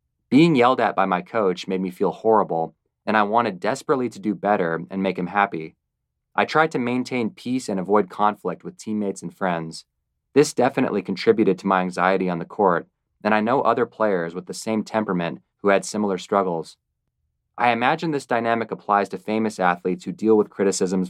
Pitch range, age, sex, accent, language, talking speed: 90-110 Hz, 30-49, male, American, English, 190 wpm